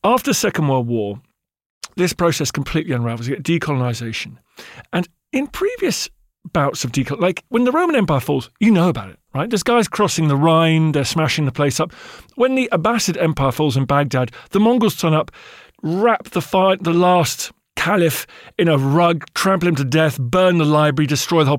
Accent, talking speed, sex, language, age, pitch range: British, 190 wpm, male, English, 40-59, 140-190 Hz